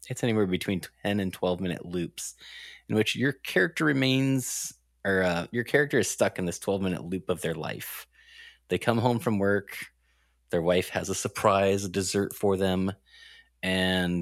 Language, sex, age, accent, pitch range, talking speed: English, male, 20-39, American, 85-105 Hz, 175 wpm